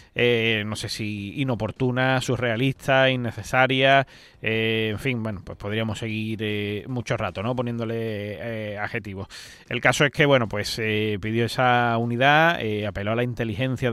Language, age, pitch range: Spanish, 20-39, 110-125 Hz